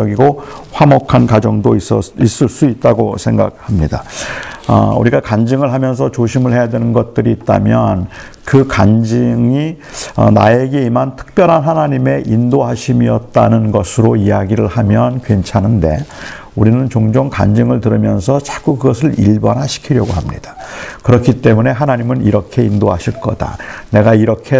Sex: male